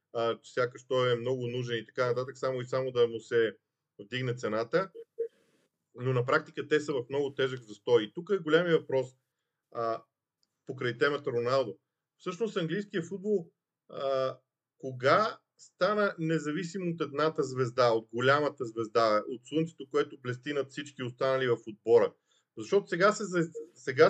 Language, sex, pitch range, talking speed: Bulgarian, male, 130-170 Hz, 150 wpm